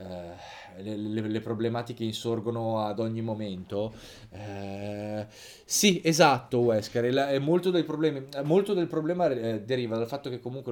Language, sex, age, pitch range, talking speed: Italian, male, 20-39, 110-145 Hz, 120 wpm